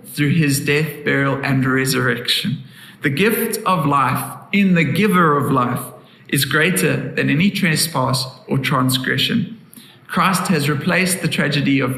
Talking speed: 140 wpm